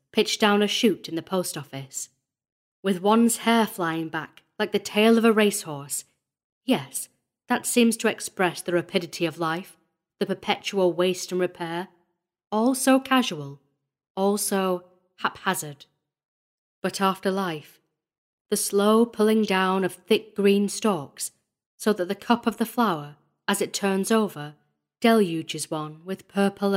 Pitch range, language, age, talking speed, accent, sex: 165-215 Hz, English, 40-59, 145 wpm, British, female